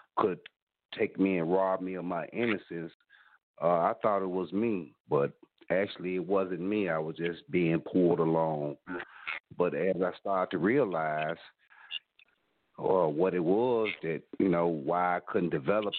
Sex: male